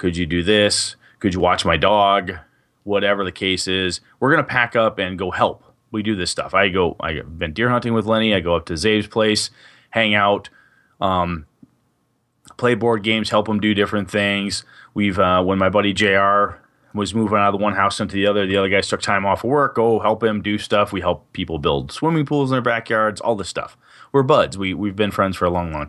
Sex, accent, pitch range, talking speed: male, American, 95-120 Hz, 230 wpm